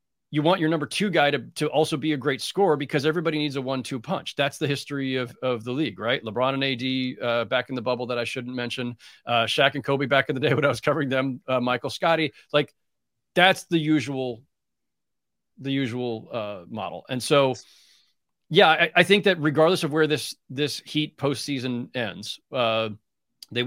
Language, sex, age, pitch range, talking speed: English, male, 40-59, 115-150 Hz, 205 wpm